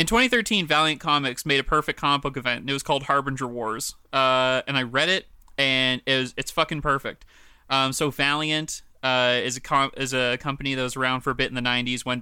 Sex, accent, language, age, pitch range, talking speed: male, American, English, 20-39, 130-155 Hz, 210 wpm